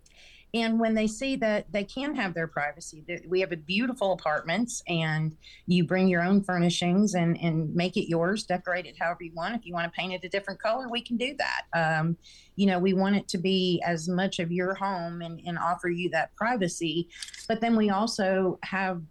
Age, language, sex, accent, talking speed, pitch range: 40-59, English, female, American, 215 wpm, 170-200 Hz